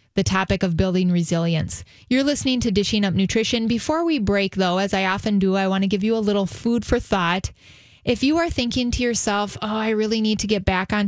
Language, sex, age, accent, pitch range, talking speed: English, female, 30-49, American, 185-215 Hz, 235 wpm